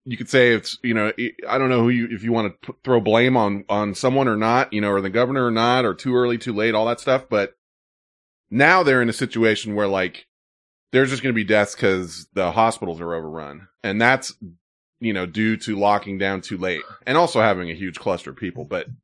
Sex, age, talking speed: male, 30-49, 240 wpm